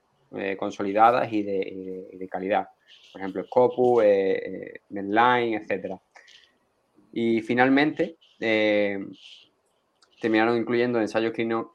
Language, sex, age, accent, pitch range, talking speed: Spanish, male, 20-39, Spanish, 105-125 Hz, 115 wpm